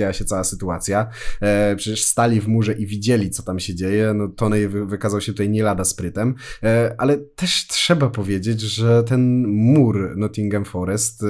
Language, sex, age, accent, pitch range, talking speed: Polish, male, 20-39, native, 95-115 Hz, 160 wpm